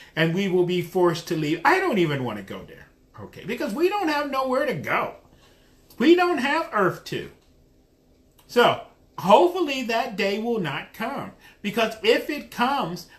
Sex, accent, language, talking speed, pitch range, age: male, American, English, 175 wpm, 185-255 Hz, 40-59